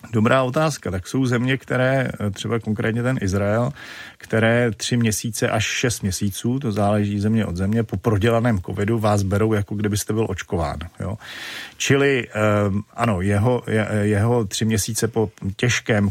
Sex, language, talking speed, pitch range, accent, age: male, Czech, 145 wpm, 100-115 Hz, native, 40-59